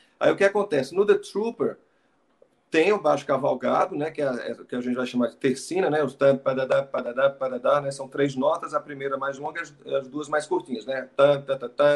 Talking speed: 220 wpm